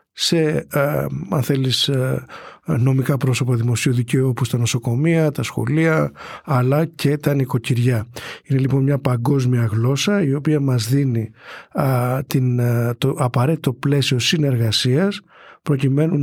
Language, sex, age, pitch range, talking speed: Greek, male, 50-69, 125-150 Hz, 130 wpm